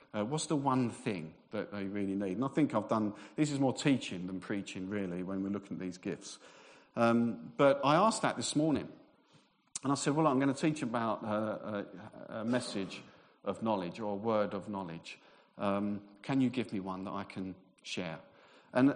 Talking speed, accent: 205 wpm, British